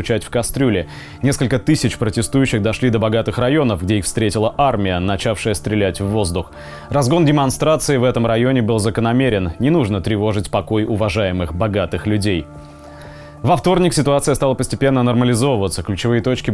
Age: 20-39